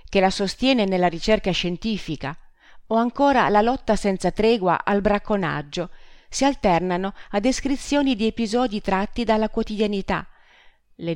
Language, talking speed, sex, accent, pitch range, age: Italian, 130 wpm, female, native, 165-215 Hz, 40-59